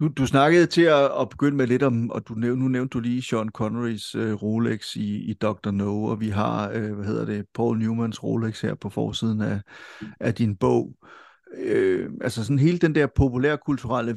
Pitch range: 115-130 Hz